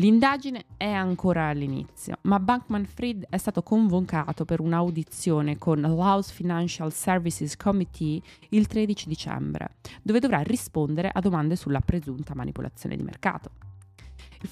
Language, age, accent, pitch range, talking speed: Italian, 20-39, native, 150-200 Hz, 130 wpm